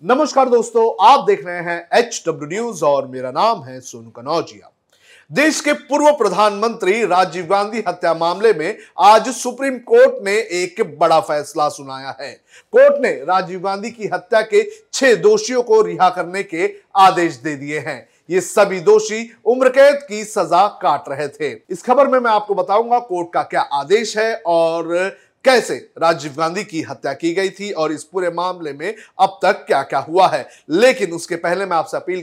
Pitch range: 170-245 Hz